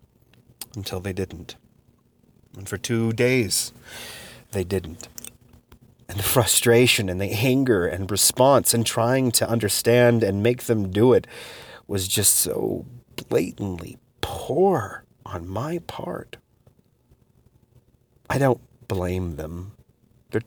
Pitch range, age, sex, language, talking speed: 90-120 Hz, 30-49, male, English, 115 wpm